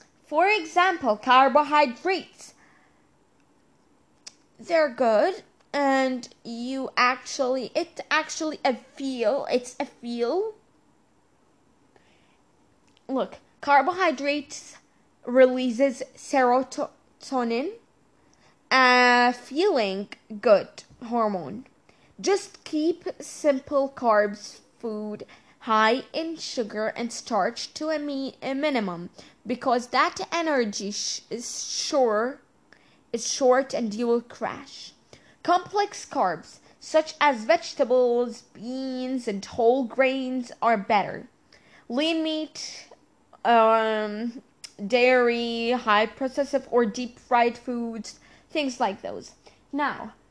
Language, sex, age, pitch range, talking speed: English, female, 20-39, 235-295 Hz, 90 wpm